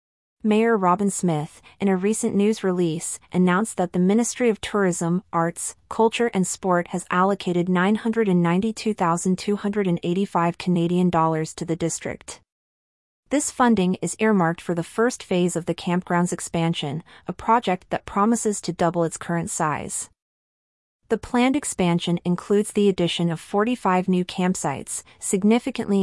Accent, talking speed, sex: American, 135 wpm, female